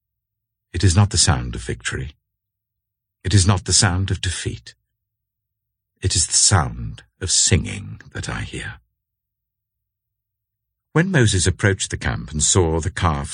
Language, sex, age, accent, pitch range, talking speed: English, male, 60-79, British, 90-110 Hz, 145 wpm